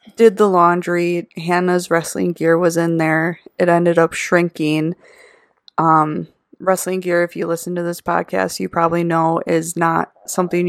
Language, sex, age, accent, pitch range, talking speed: English, female, 20-39, American, 165-185 Hz, 155 wpm